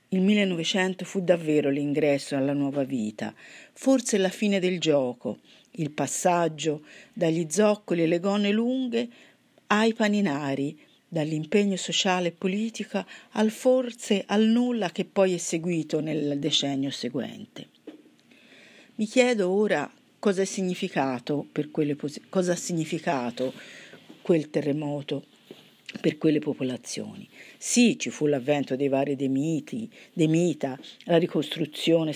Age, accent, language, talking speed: 50-69, native, Italian, 120 wpm